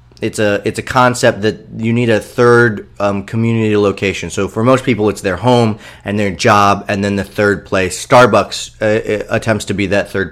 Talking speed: 205 wpm